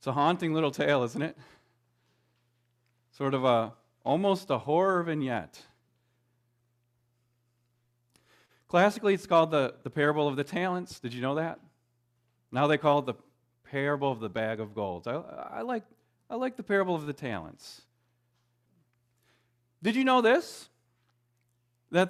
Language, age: English, 40-59